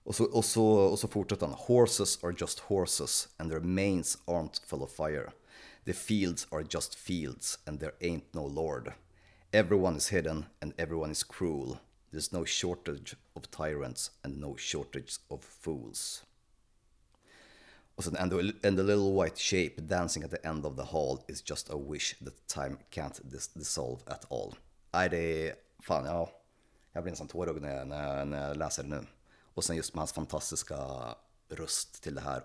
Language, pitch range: Swedish, 75-95 Hz